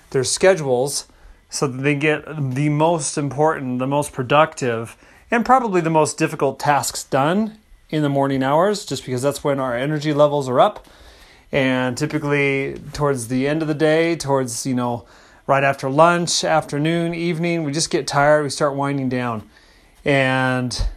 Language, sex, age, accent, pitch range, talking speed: English, male, 30-49, American, 130-160 Hz, 165 wpm